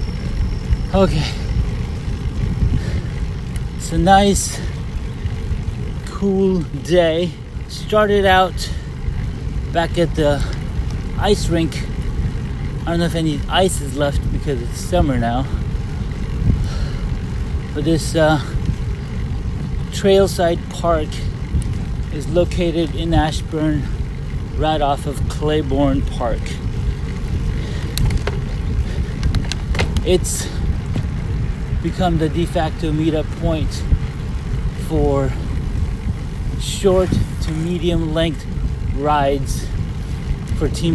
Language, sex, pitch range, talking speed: English, male, 115-170 Hz, 80 wpm